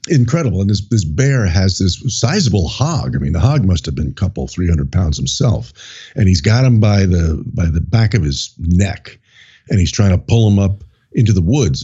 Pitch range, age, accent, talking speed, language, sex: 95-130 Hz, 50-69, American, 220 wpm, English, male